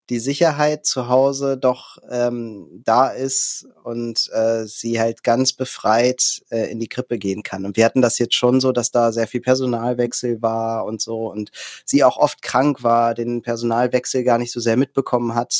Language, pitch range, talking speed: German, 115-135 Hz, 190 wpm